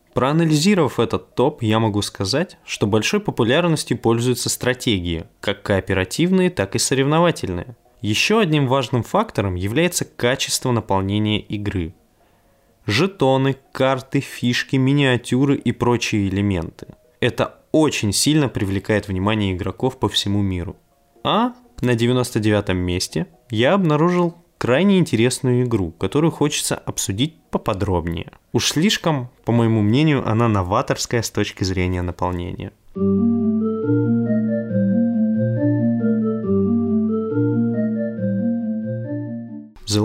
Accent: native